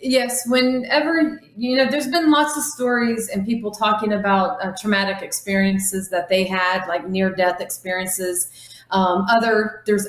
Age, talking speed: 30-49, 150 wpm